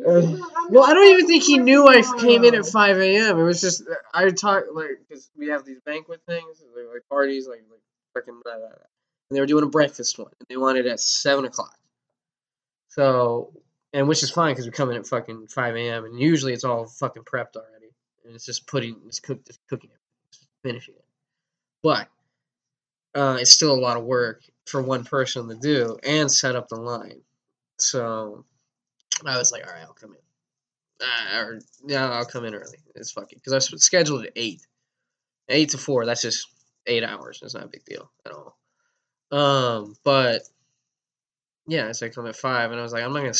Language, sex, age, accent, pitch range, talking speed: English, male, 10-29, American, 115-150 Hz, 205 wpm